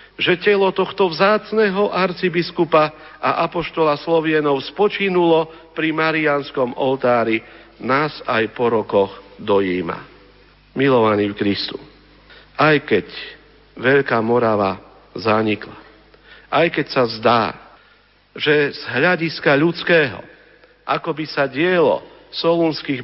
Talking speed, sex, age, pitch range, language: 100 wpm, male, 50-69, 145-195 Hz, Slovak